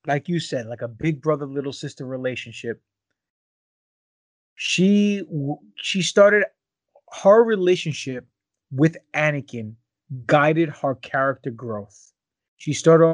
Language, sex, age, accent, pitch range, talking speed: English, male, 30-49, American, 135-170 Hz, 105 wpm